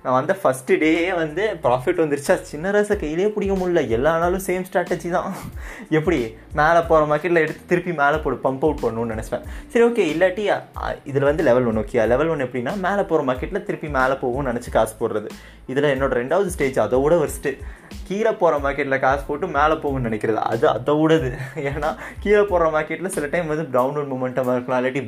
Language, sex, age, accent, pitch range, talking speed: Tamil, male, 20-39, native, 125-170 Hz, 185 wpm